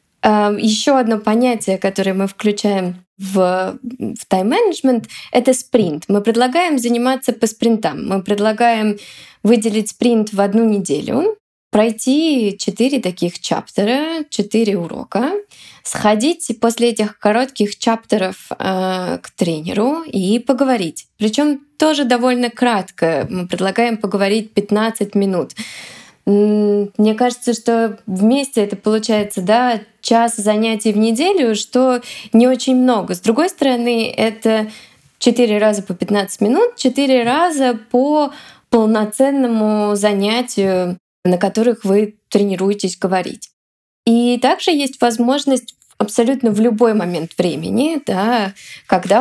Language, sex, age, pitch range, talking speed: Russian, female, 20-39, 195-245 Hz, 115 wpm